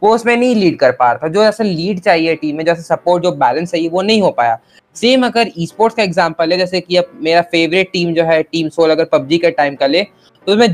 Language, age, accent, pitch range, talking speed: Hindi, 20-39, native, 165-205 Hz, 265 wpm